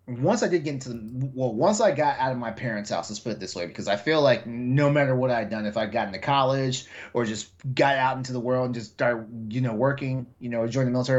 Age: 30-49